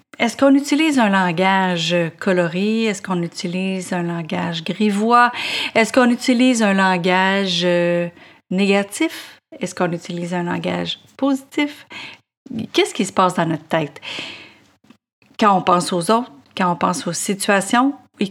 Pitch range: 185-250 Hz